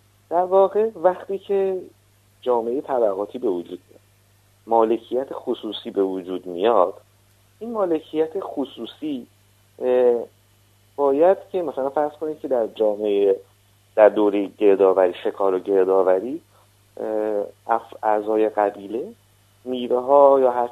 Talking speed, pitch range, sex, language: 105 wpm, 100-140 Hz, male, Persian